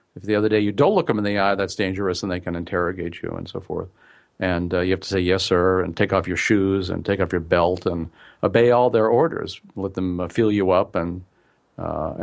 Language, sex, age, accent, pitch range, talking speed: English, male, 50-69, American, 95-115 Hz, 255 wpm